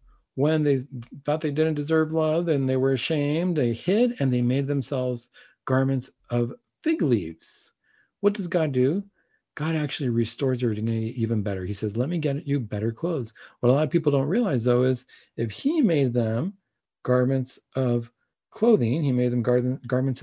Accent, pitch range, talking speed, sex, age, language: American, 115-150 Hz, 180 wpm, male, 40-59, English